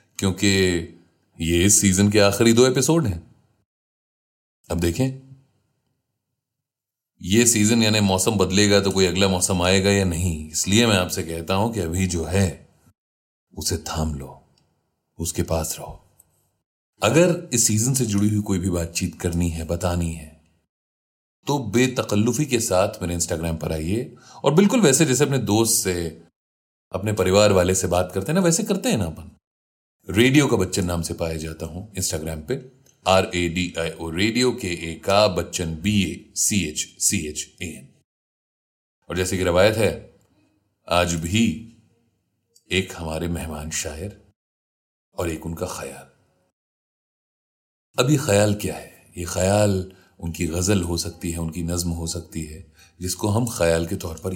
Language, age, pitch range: Hindi, 30-49, 85-110 Hz